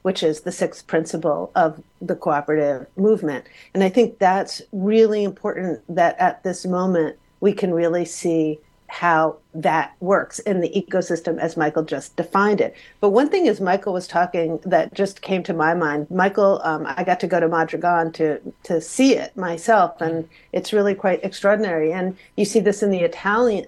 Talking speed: 180 wpm